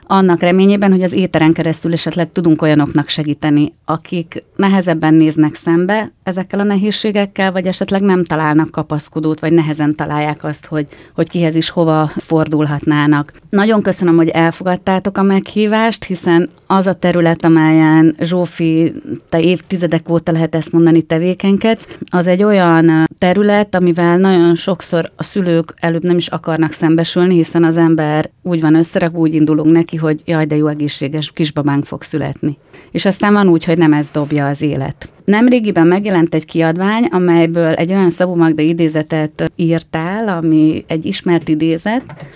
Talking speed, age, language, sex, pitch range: 150 wpm, 30-49, Hungarian, female, 155-180 Hz